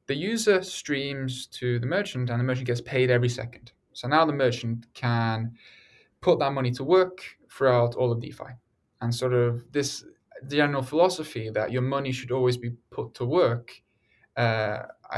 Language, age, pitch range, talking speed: Swedish, 10-29, 115-135 Hz, 170 wpm